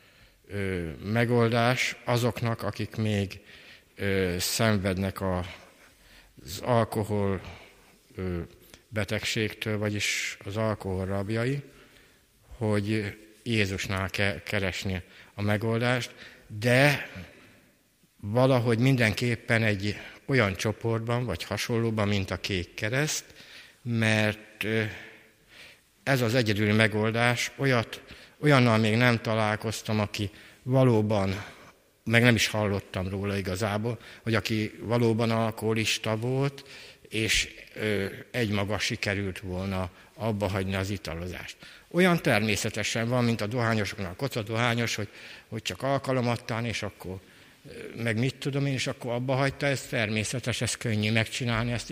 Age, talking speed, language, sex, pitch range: 60-79, 105 wpm, Hungarian, male, 100-120 Hz